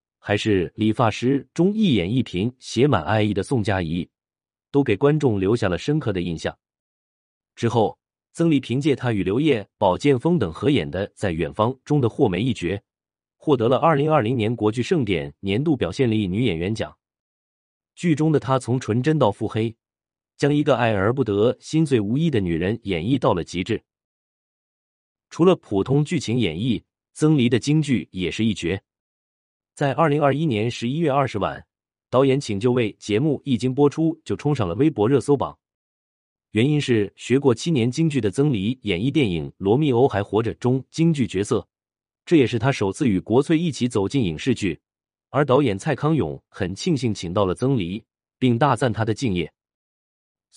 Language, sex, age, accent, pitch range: Chinese, male, 30-49, native, 100-140 Hz